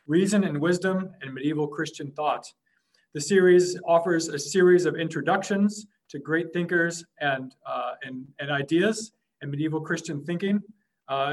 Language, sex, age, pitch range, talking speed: English, male, 40-59, 145-180 Hz, 145 wpm